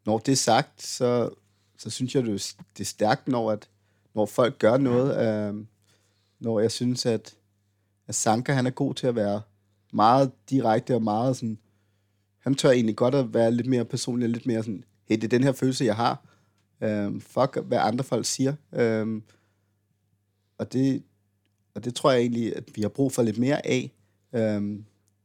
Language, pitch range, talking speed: Danish, 105-125 Hz, 185 wpm